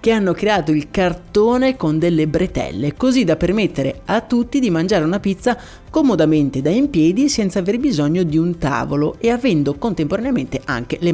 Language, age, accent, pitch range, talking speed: Italian, 30-49, native, 150-215 Hz, 170 wpm